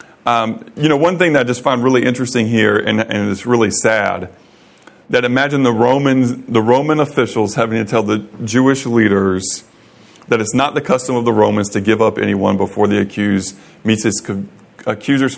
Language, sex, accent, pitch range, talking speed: English, male, American, 105-125 Hz, 185 wpm